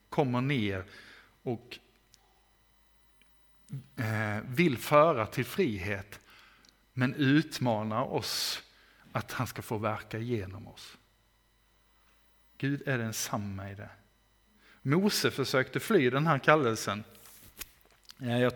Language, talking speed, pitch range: Swedish, 95 wpm, 110-140 Hz